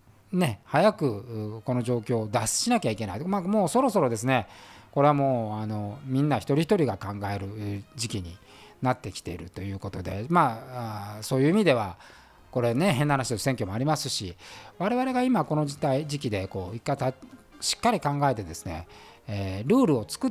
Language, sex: Japanese, male